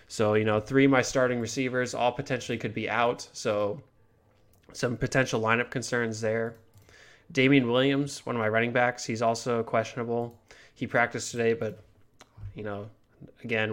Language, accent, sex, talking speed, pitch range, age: English, American, male, 155 wpm, 110-125 Hz, 20-39